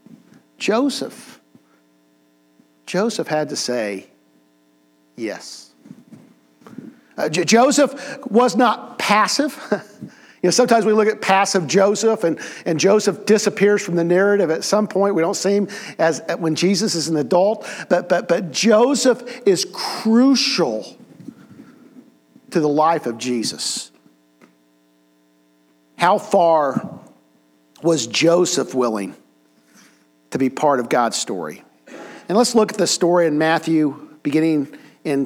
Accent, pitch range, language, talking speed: American, 130-210 Hz, English, 125 wpm